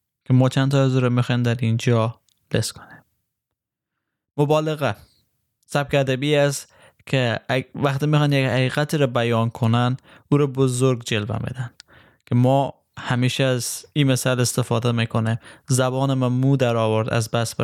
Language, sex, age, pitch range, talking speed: Persian, male, 10-29, 115-135 Hz, 140 wpm